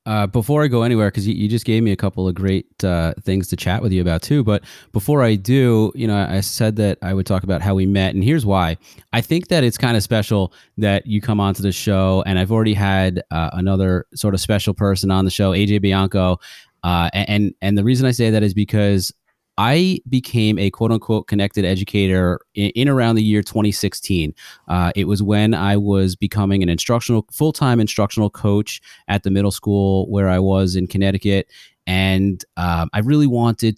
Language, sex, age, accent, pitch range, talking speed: English, male, 30-49, American, 95-115 Hz, 215 wpm